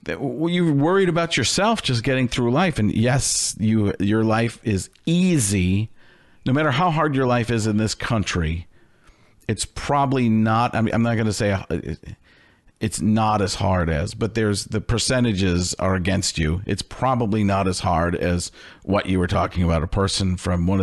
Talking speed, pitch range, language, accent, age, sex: 170 wpm, 100-135 Hz, English, American, 50-69, male